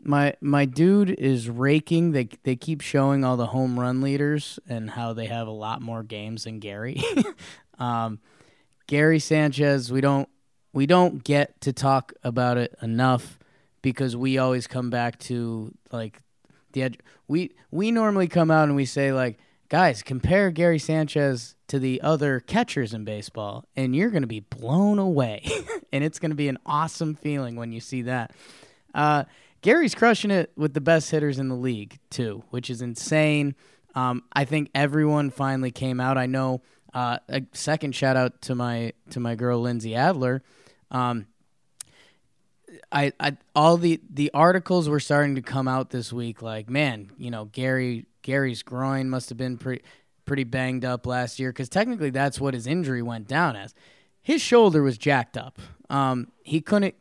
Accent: American